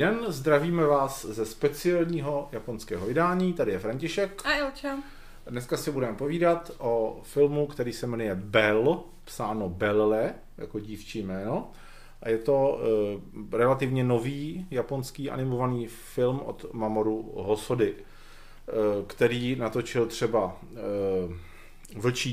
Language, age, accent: Czech, 40-59, native